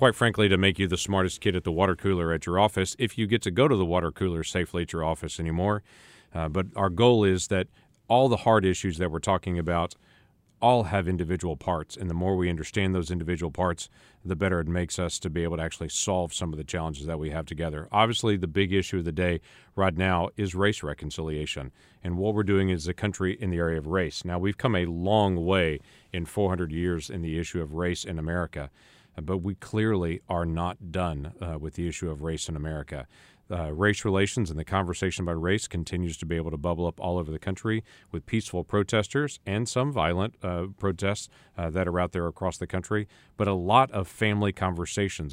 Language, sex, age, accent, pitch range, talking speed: English, male, 40-59, American, 85-100 Hz, 225 wpm